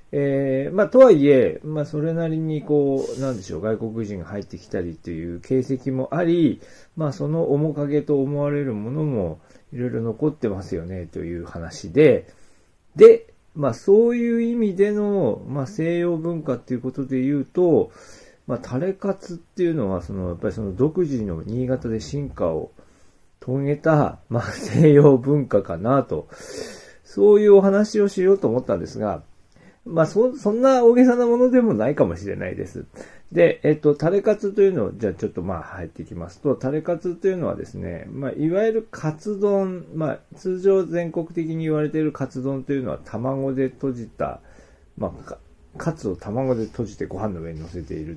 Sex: male